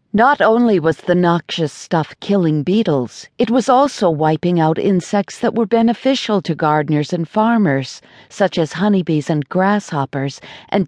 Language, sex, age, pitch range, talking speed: English, female, 50-69, 155-205 Hz, 150 wpm